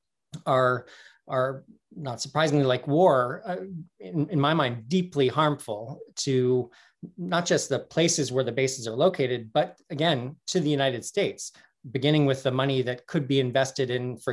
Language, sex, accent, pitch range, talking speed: English, male, American, 125-150 Hz, 165 wpm